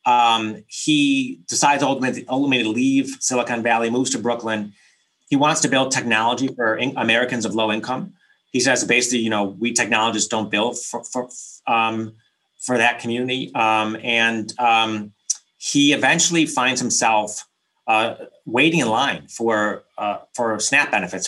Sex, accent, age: male, American, 30-49